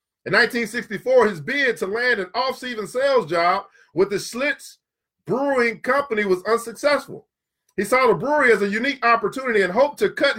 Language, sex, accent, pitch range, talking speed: English, male, American, 220-275 Hz, 170 wpm